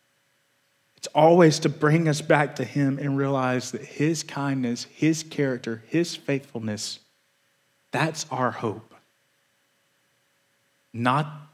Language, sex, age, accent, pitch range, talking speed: English, male, 30-49, American, 120-150 Hz, 105 wpm